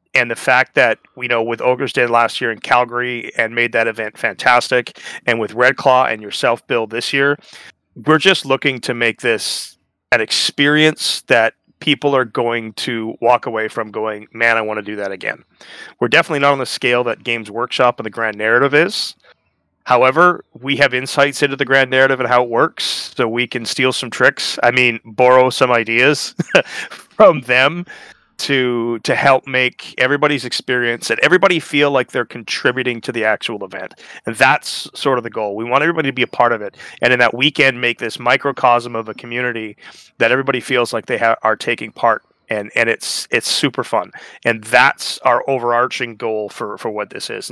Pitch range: 115-135 Hz